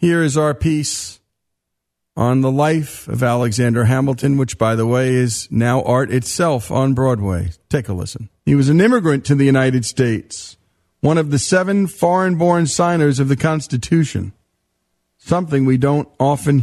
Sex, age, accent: male, 50-69, American